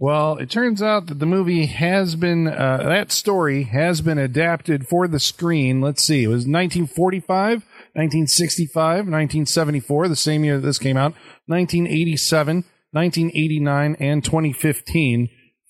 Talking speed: 135 wpm